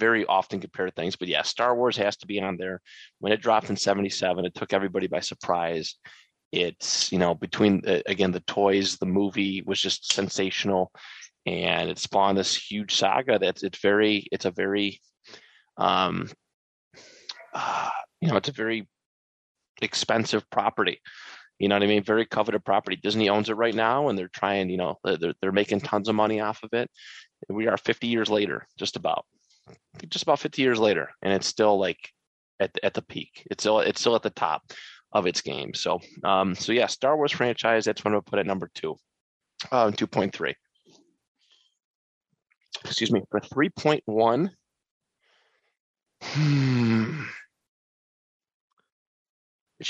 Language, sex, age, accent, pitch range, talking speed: English, male, 30-49, American, 100-115 Hz, 165 wpm